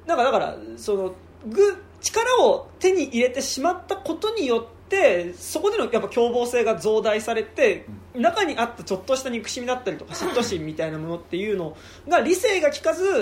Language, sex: Japanese, male